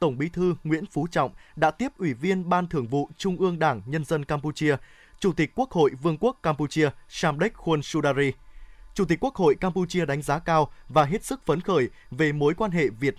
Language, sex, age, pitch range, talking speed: Vietnamese, male, 20-39, 150-185 Hz, 215 wpm